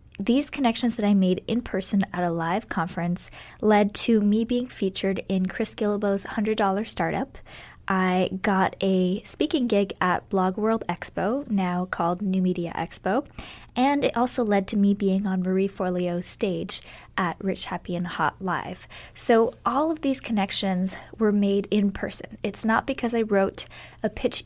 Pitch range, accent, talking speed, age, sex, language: 190-230 Hz, American, 165 wpm, 20-39, female, English